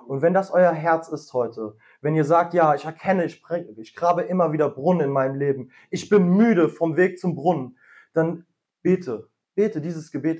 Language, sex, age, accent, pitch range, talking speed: German, male, 20-39, German, 135-180 Hz, 195 wpm